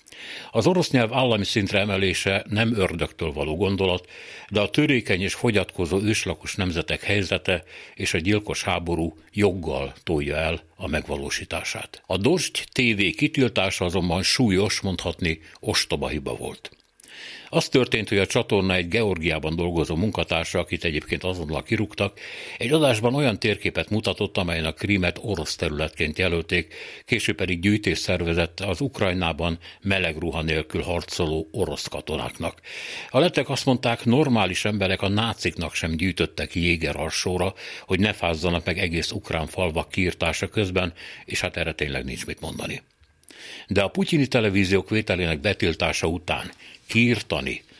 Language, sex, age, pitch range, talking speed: Hungarian, male, 60-79, 85-105 Hz, 135 wpm